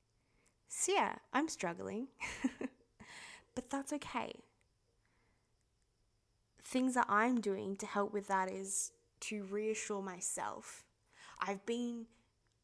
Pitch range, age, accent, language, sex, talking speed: 180-205 Hz, 20-39, Australian, English, female, 100 wpm